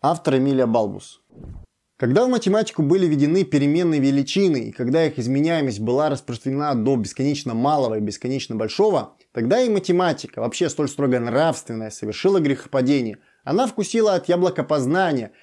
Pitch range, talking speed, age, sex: 125-185 Hz, 135 wpm, 20-39, male